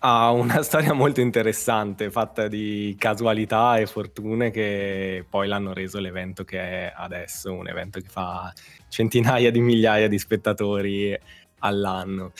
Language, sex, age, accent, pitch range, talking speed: Italian, male, 20-39, native, 95-110 Hz, 135 wpm